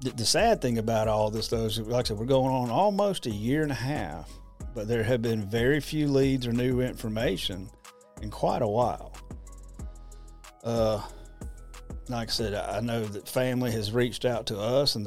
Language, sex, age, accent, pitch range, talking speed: English, male, 40-59, American, 105-125 Hz, 190 wpm